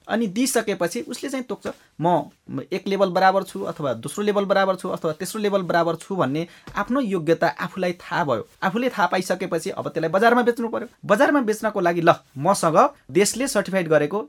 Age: 20-39